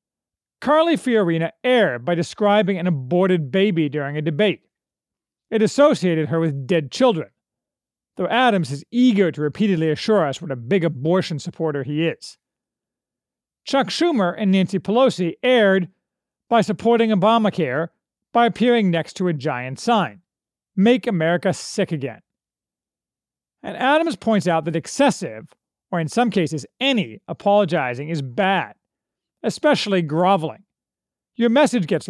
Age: 40-59